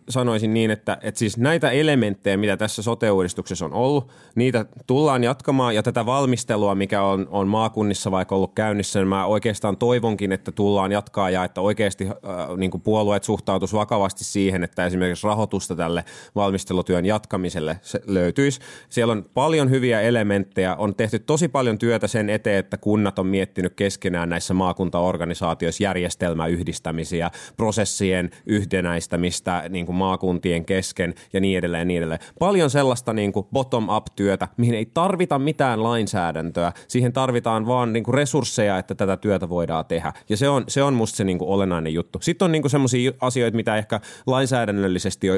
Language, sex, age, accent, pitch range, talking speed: Finnish, male, 30-49, native, 90-115 Hz, 150 wpm